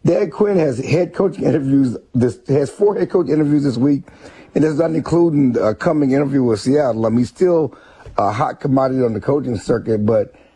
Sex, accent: male, American